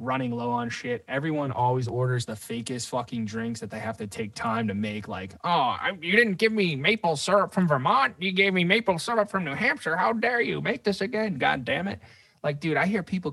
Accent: American